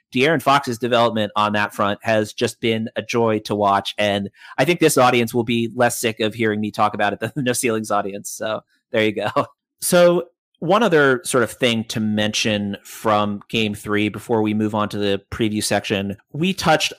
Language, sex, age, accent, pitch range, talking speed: English, male, 30-49, American, 105-120 Hz, 205 wpm